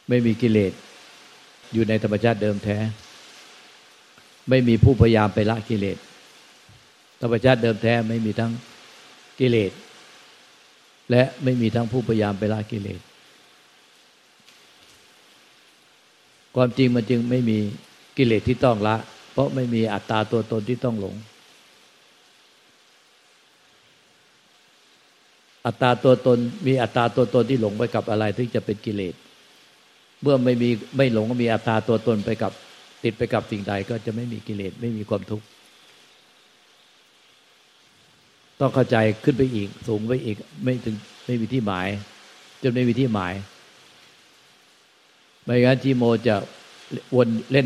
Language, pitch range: Thai, 105-125 Hz